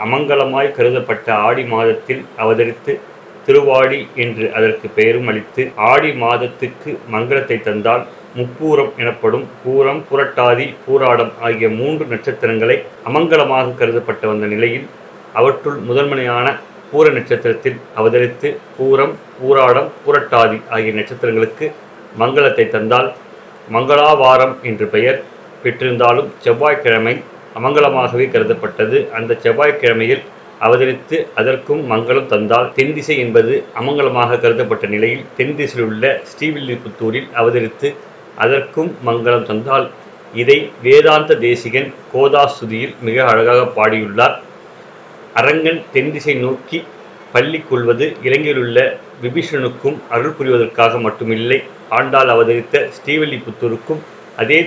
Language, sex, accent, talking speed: Tamil, male, native, 90 wpm